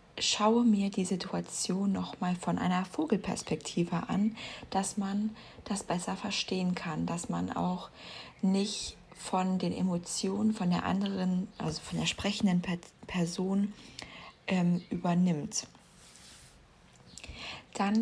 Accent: German